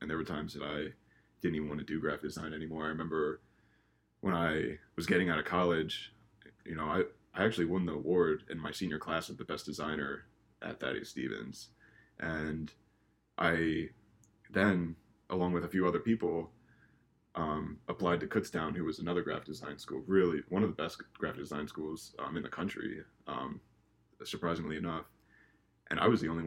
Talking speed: 185 wpm